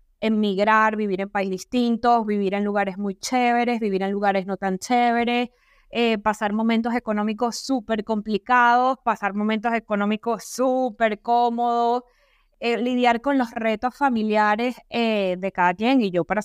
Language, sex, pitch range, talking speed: Spanish, female, 200-240 Hz, 145 wpm